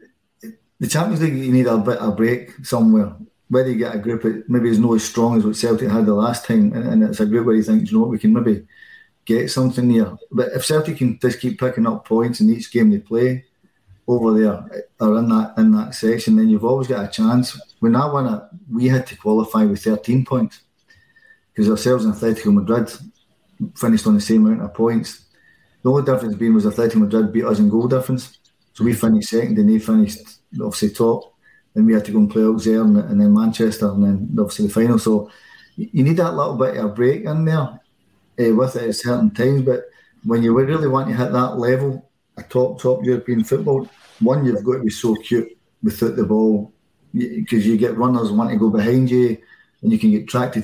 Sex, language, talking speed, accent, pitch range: male, English, 225 wpm, British, 110-140 Hz